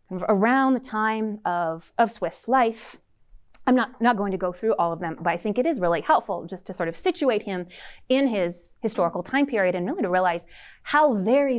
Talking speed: 210 wpm